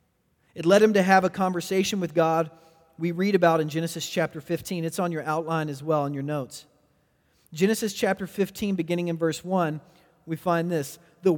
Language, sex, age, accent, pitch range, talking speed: English, male, 40-59, American, 160-205 Hz, 190 wpm